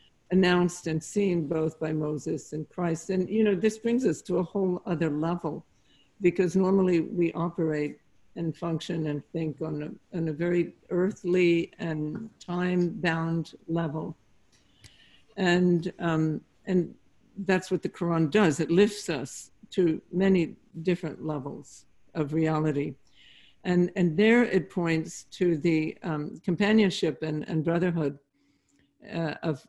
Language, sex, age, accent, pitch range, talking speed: English, female, 60-79, American, 160-185 Hz, 135 wpm